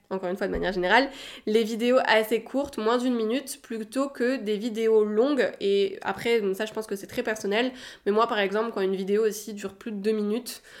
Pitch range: 195-250 Hz